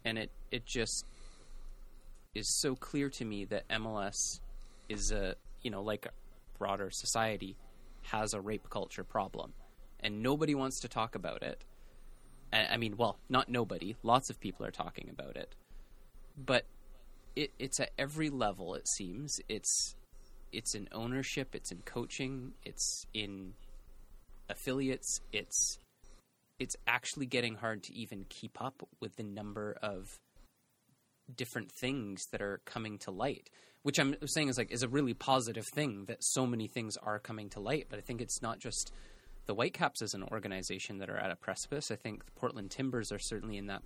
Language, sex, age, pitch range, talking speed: English, male, 30-49, 105-135 Hz, 170 wpm